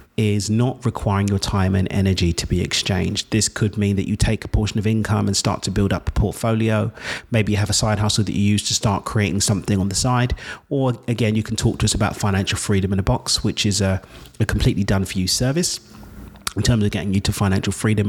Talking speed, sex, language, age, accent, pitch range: 240 wpm, male, English, 40-59, British, 100-115 Hz